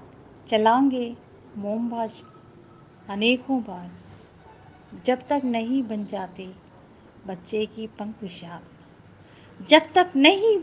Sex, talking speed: female, 90 wpm